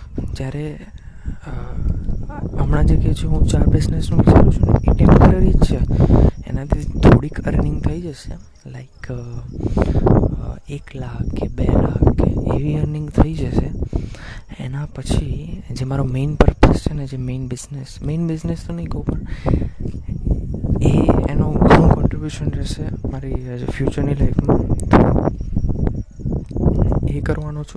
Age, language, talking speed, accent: 20-39, Gujarati, 50 wpm, native